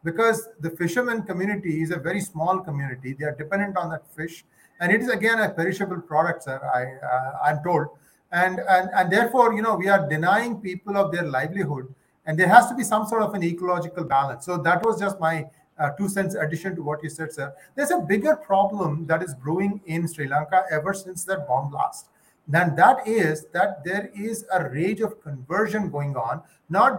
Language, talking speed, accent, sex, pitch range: English, 205 wpm, Indian, male, 160-200 Hz